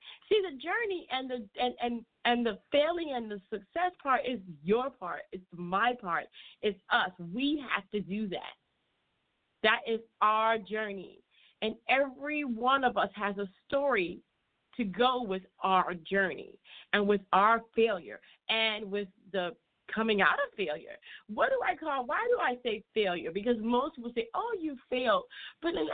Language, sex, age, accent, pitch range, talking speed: English, female, 40-59, American, 200-270 Hz, 170 wpm